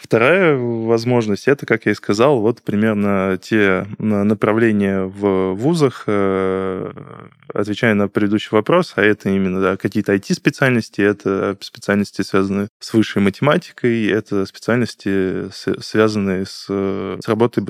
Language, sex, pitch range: Russian, male, 100-120 Hz